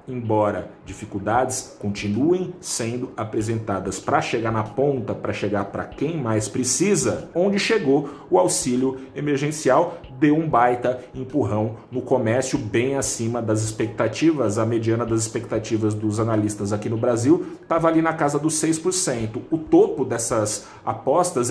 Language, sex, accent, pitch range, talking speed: Portuguese, male, Brazilian, 110-165 Hz, 135 wpm